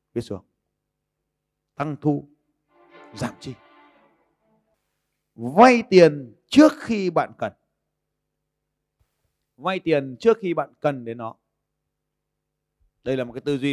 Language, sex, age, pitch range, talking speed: Vietnamese, male, 30-49, 145-220 Hz, 105 wpm